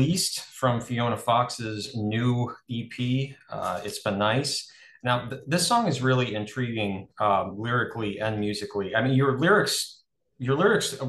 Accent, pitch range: American, 100-125 Hz